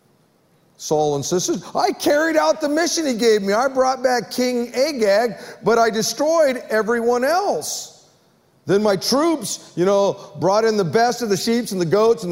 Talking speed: 175 wpm